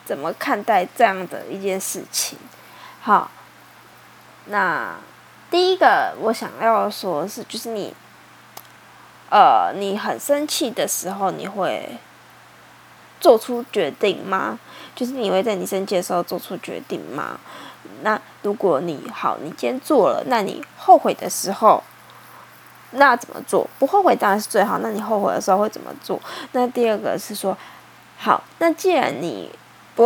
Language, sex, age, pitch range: Chinese, female, 10-29, 205-305 Hz